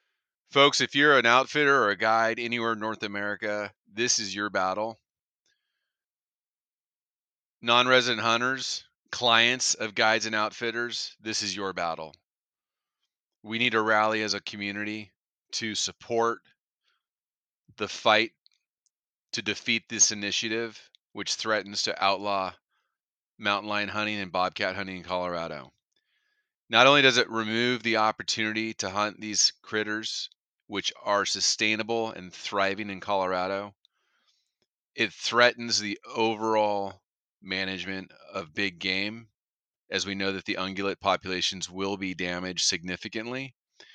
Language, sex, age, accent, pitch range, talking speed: English, male, 30-49, American, 95-115 Hz, 125 wpm